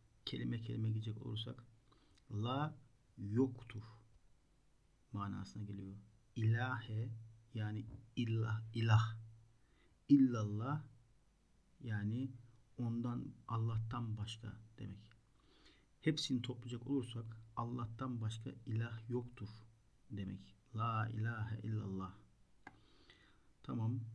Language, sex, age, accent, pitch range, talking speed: Turkish, male, 50-69, native, 110-125 Hz, 75 wpm